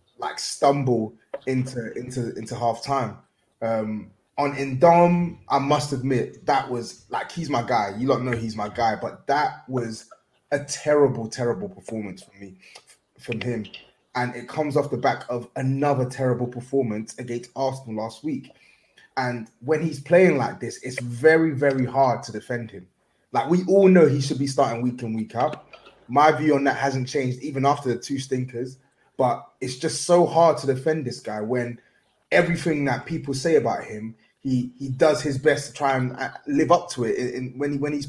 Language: English